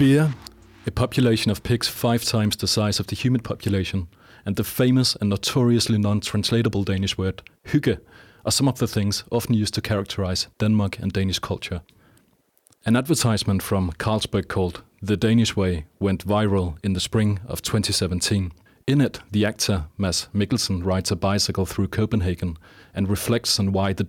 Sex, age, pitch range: male, 30-49, 95-110 Hz